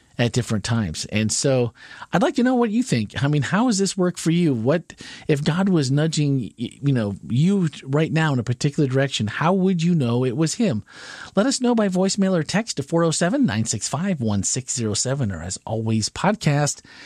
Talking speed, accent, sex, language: 190 wpm, American, male, English